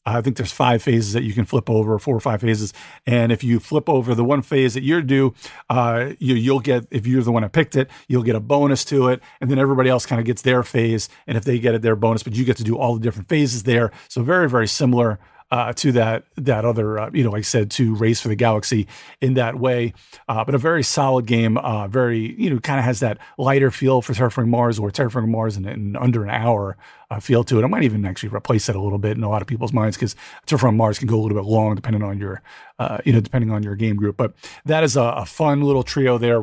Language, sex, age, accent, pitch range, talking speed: English, male, 40-59, American, 115-140 Hz, 275 wpm